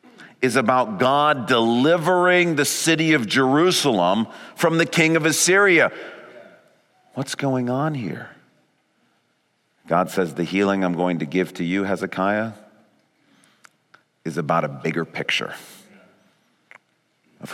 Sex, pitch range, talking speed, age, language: male, 100-155 Hz, 115 wpm, 50-69, English